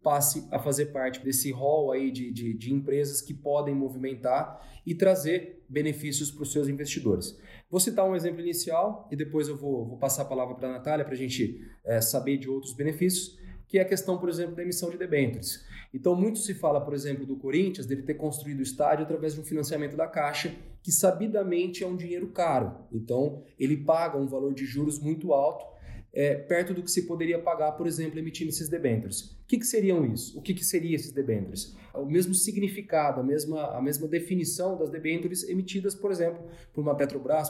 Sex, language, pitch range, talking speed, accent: male, Portuguese, 140-175 Hz, 200 wpm, Brazilian